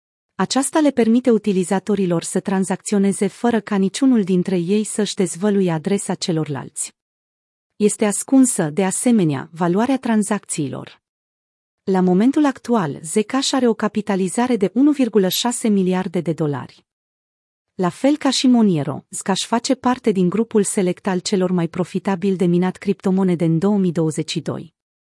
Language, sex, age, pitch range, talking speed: Romanian, female, 30-49, 175-220 Hz, 125 wpm